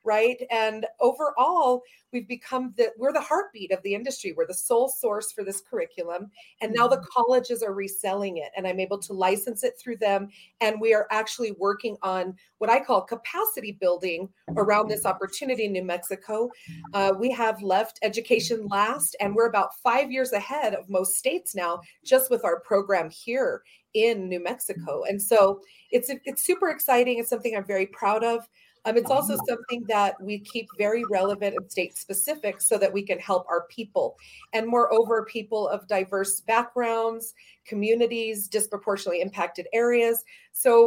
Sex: female